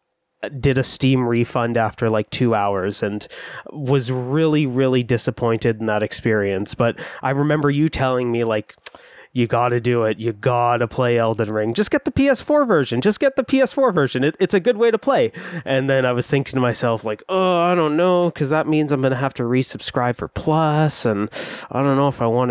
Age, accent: 30-49, American